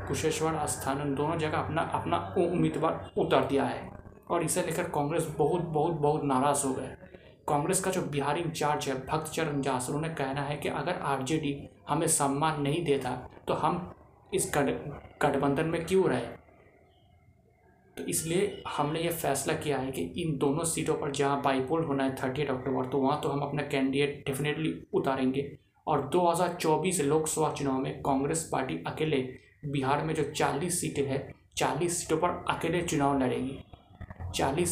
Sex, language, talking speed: male, Hindi, 160 wpm